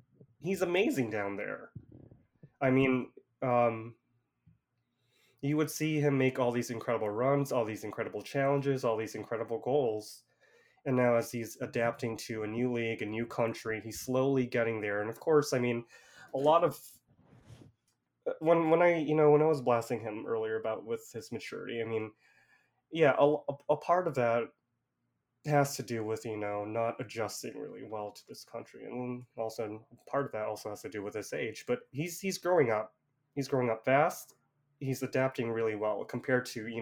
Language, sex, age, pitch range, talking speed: English, male, 20-39, 110-140 Hz, 185 wpm